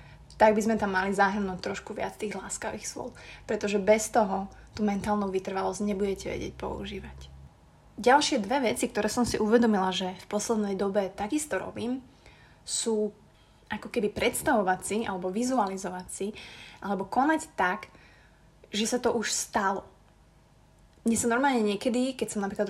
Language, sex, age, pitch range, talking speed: Slovak, female, 20-39, 195-225 Hz, 150 wpm